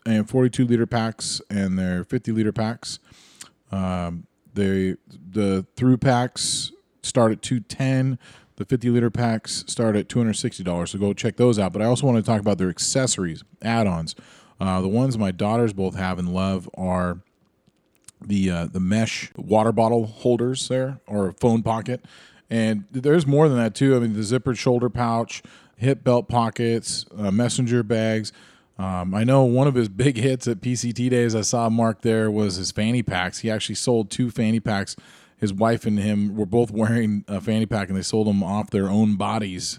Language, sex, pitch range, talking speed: English, male, 100-120 Hz, 180 wpm